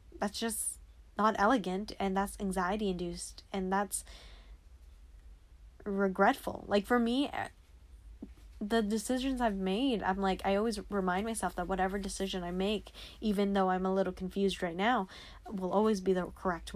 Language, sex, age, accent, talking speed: English, female, 10-29, American, 150 wpm